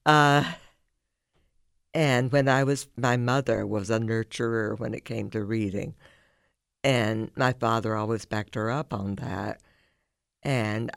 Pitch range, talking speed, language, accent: 110-135 Hz, 135 wpm, English, American